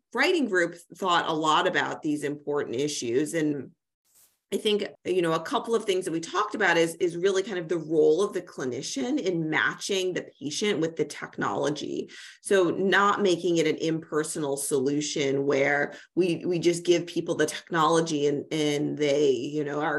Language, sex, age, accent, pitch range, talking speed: English, female, 30-49, American, 150-180 Hz, 180 wpm